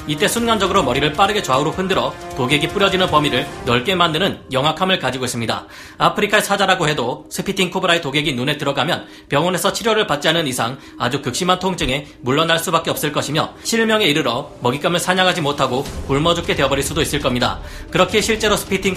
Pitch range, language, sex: 135-190 Hz, Korean, male